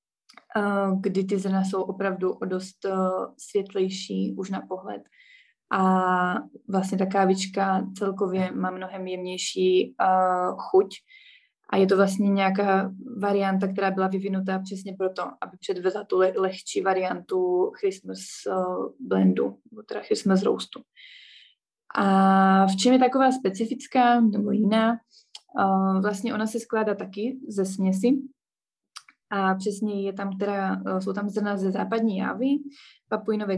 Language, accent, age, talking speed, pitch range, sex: Czech, native, 20-39, 130 wpm, 190-210 Hz, female